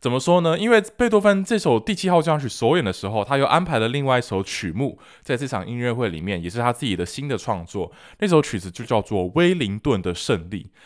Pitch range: 100-170 Hz